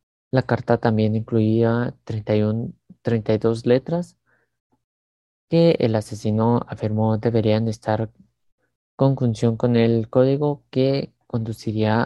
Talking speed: 95 wpm